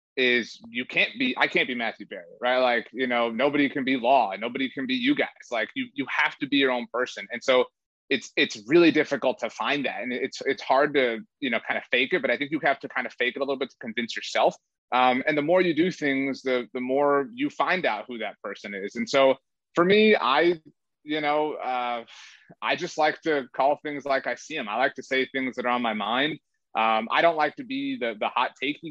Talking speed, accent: 255 wpm, American